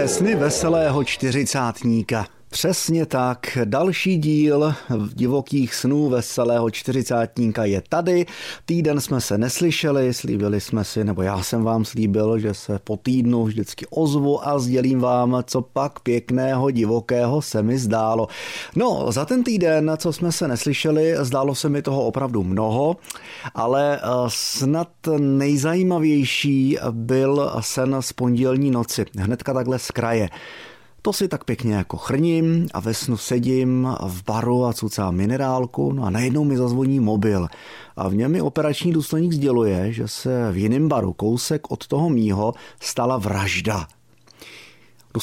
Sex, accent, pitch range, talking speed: male, native, 115-150 Hz, 140 wpm